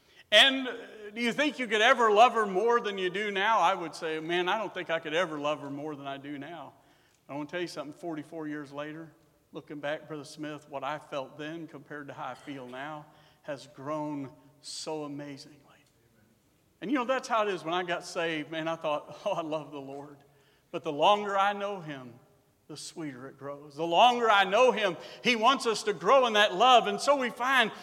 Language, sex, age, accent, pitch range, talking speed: English, male, 50-69, American, 155-250 Hz, 225 wpm